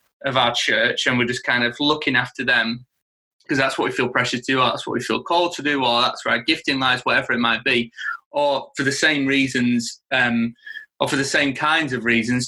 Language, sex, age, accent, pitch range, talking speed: English, male, 20-39, British, 120-140 Hz, 240 wpm